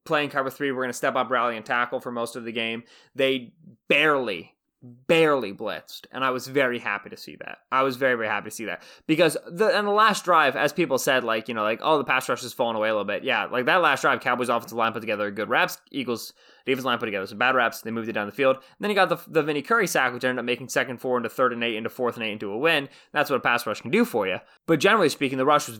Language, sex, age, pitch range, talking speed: English, male, 20-39, 115-145 Hz, 295 wpm